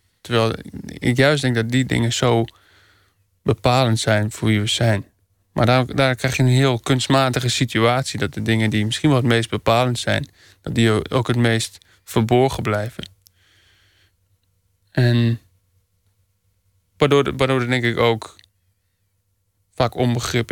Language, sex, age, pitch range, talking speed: Dutch, male, 20-39, 100-125 Hz, 145 wpm